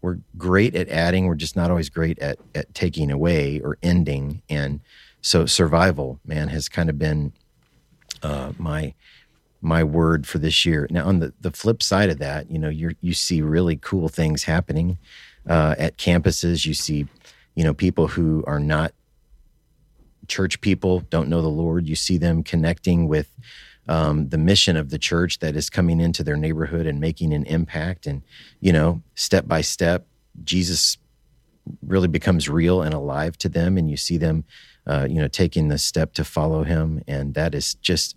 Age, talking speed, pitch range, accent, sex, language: 40-59, 180 wpm, 75-90 Hz, American, male, English